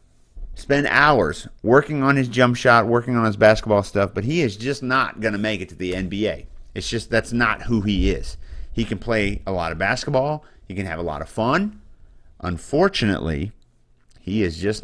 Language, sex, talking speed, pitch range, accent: English, male, 195 wpm, 100-130 Hz, American